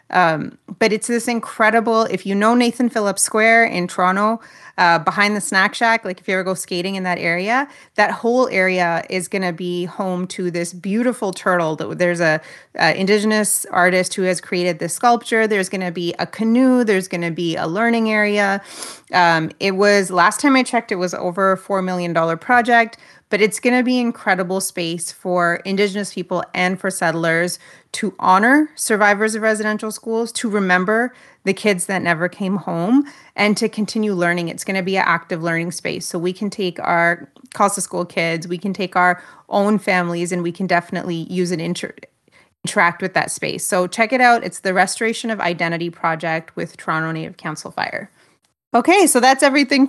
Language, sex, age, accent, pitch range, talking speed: English, female, 30-49, American, 180-230 Hz, 190 wpm